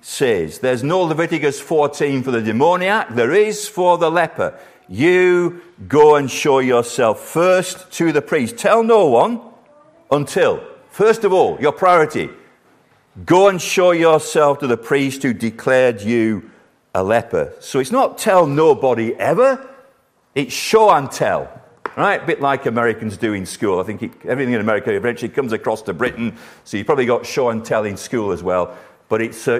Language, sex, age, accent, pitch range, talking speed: English, male, 50-69, British, 130-215 Hz, 170 wpm